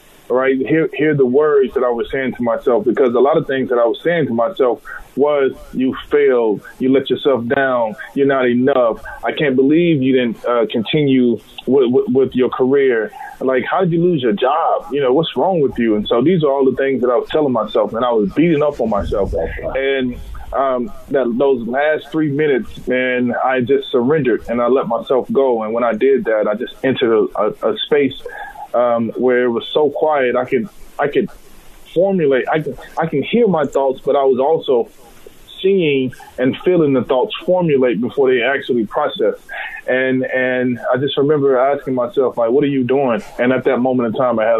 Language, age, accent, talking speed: English, 20-39, American, 210 wpm